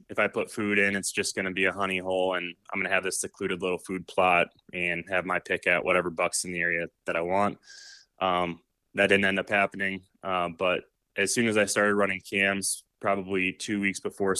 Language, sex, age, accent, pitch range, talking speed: English, male, 20-39, American, 95-105 Hz, 230 wpm